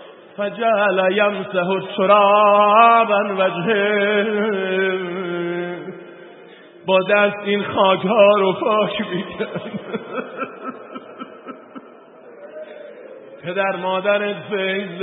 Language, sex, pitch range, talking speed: Persian, male, 180-210 Hz, 60 wpm